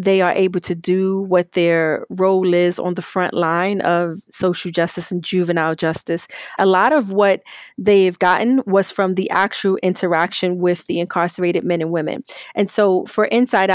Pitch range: 170-195 Hz